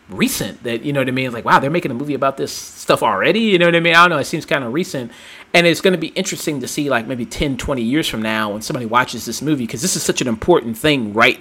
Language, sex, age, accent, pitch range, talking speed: English, male, 30-49, American, 105-130 Hz, 305 wpm